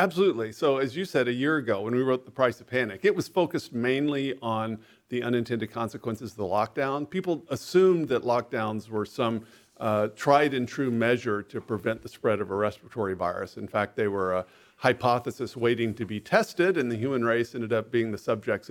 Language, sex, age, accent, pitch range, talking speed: English, male, 50-69, American, 110-140 Hz, 205 wpm